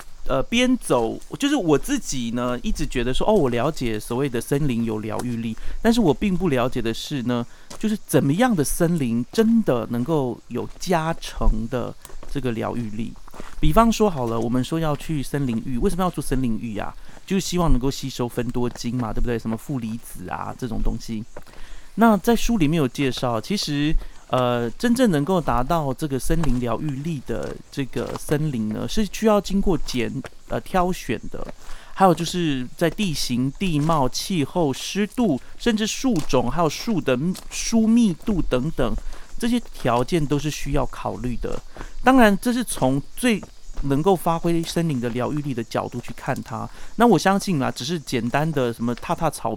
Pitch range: 120-175 Hz